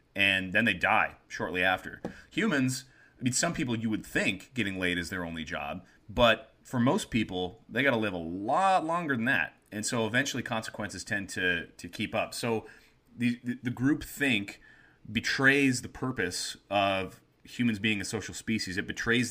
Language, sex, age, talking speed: English, male, 30-49, 180 wpm